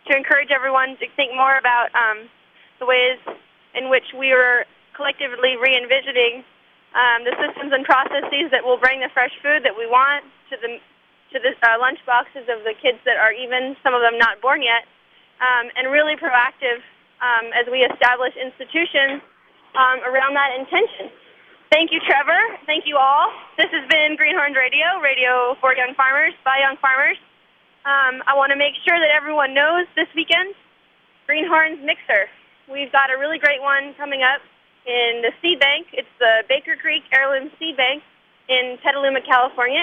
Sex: female